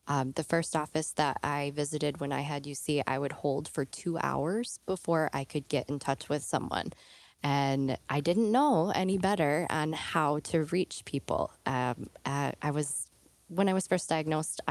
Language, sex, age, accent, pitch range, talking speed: English, female, 10-29, American, 135-165 Hz, 180 wpm